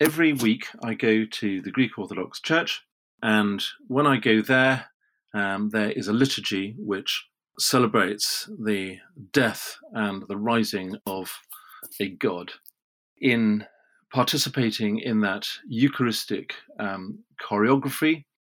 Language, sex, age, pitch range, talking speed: English, male, 40-59, 100-125 Hz, 115 wpm